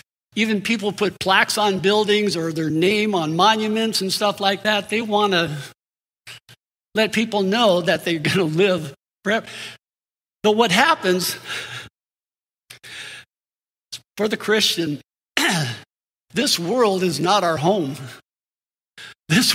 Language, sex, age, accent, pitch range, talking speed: English, male, 60-79, American, 170-215 Hz, 125 wpm